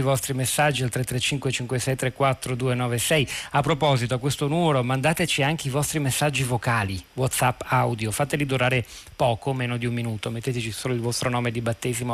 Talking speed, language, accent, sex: 160 wpm, Italian, native, male